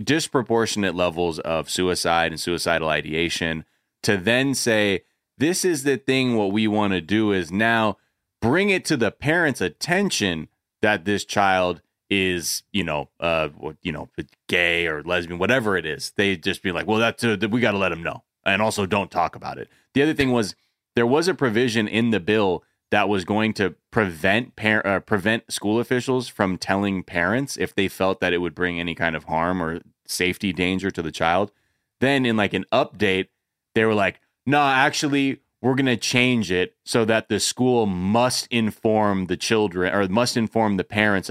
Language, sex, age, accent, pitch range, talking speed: English, male, 30-49, American, 90-120 Hz, 185 wpm